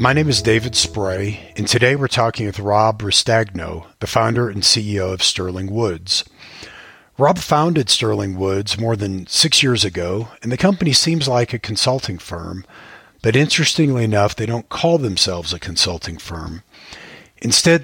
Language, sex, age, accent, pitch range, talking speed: English, male, 50-69, American, 100-120 Hz, 160 wpm